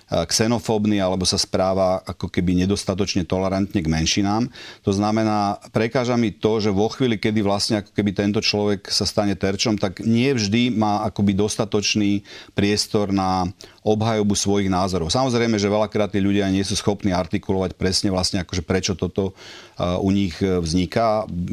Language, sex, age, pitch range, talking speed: Slovak, male, 40-59, 95-105 Hz, 155 wpm